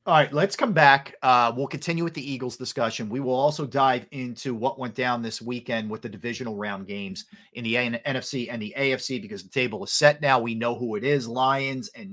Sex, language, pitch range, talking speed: male, English, 115-145 Hz, 230 wpm